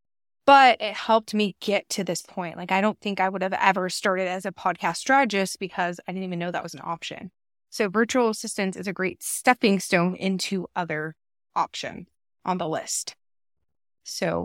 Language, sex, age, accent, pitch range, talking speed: English, female, 20-39, American, 180-235 Hz, 185 wpm